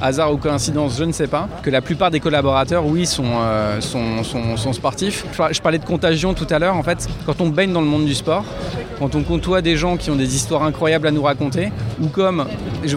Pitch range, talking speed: 130-165 Hz, 240 wpm